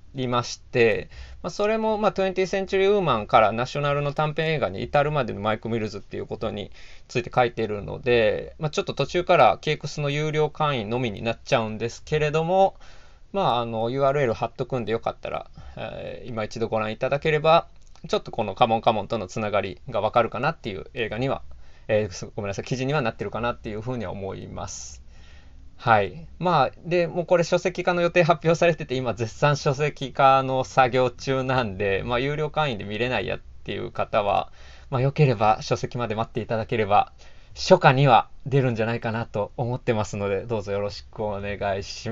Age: 20-39